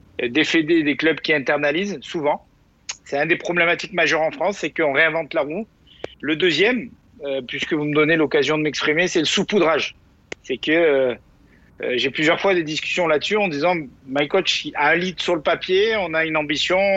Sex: male